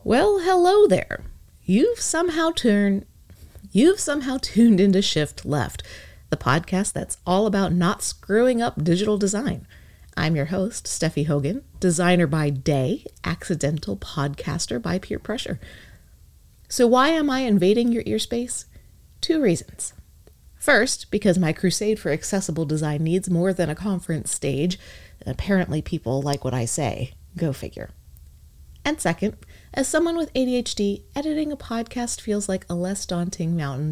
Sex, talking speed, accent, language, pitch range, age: female, 140 wpm, American, English, 145-230 Hz, 30-49